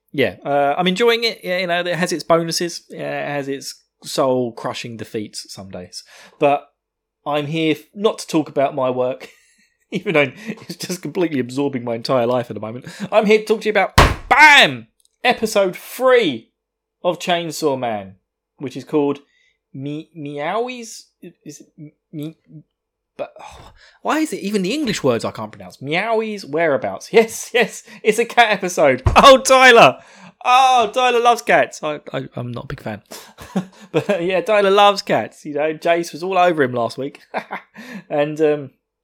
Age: 20-39